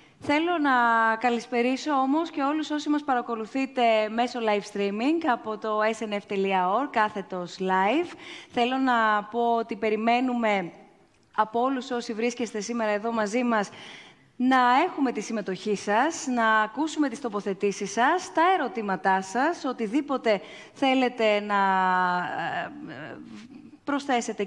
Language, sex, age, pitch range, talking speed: Greek, female, 20-39, 215-280 Hz, 115 wpm